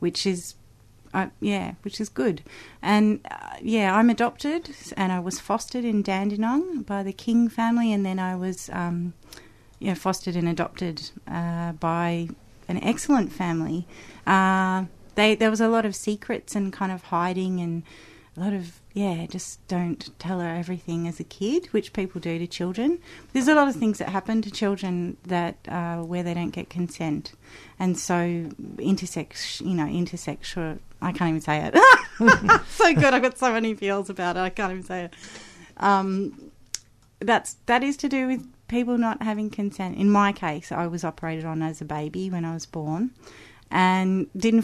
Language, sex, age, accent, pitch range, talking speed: English, female, 30-49, Australian, 165-200 Hz, 180 wpm